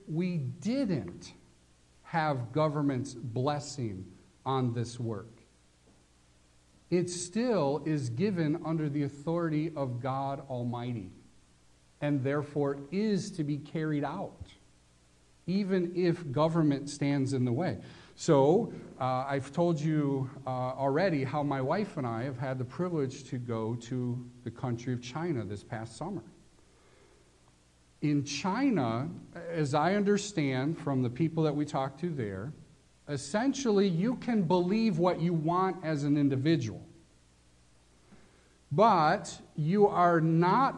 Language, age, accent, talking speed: English, 50-69, American, 125 wpm